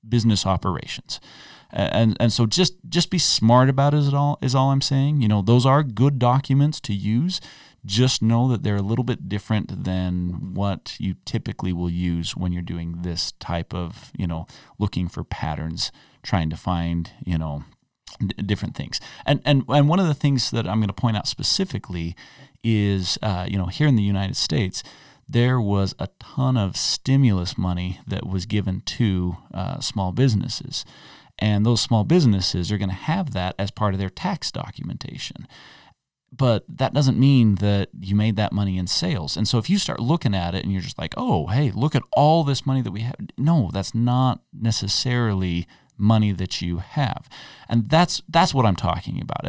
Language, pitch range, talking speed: English, 95-135 Hz, 190 wpm